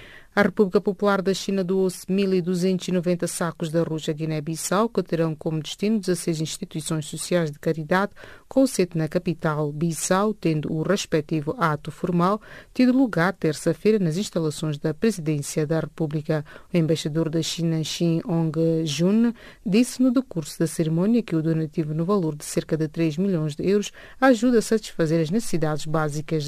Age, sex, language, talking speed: 30-49, female, English, 155 wpm